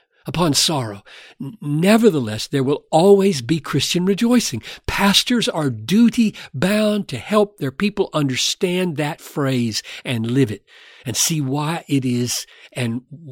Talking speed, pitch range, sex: 125 wpm, 115-185 Hz, male